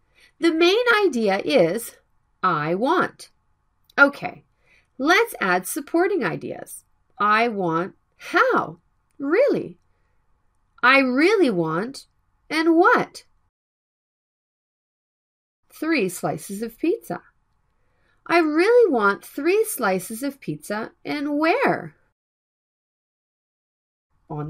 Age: 40-59